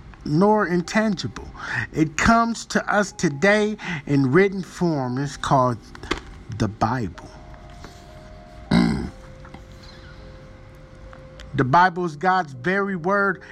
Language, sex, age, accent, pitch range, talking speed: English, male, 50-69, American, 170-265 Hz, 90 wpm